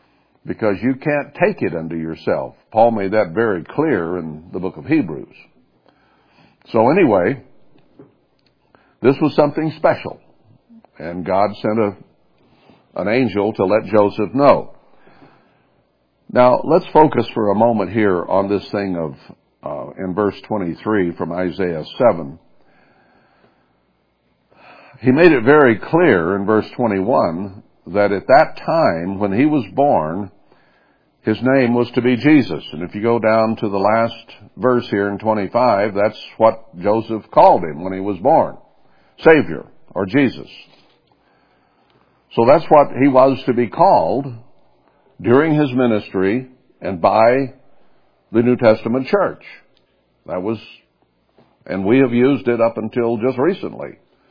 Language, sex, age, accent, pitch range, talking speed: English, male, 60-79, American, 95-125 Hz, 140 wpm